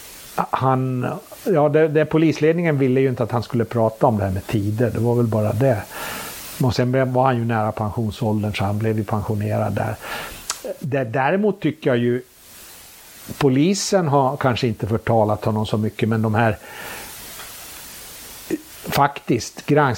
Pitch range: 115-150 Hz